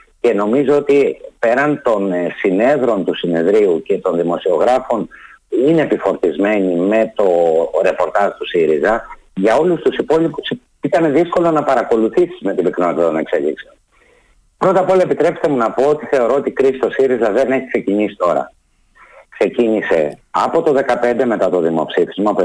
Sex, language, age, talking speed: male, Greek, 50-69, 150 wpm